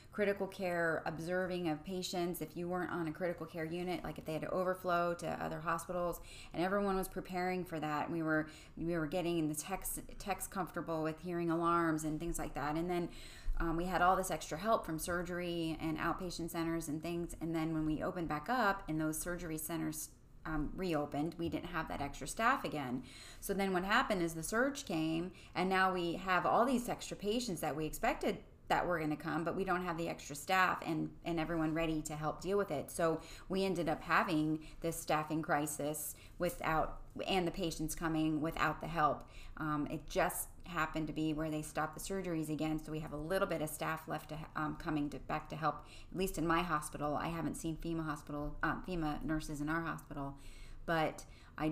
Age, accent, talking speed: 20-39, American, 210 wpm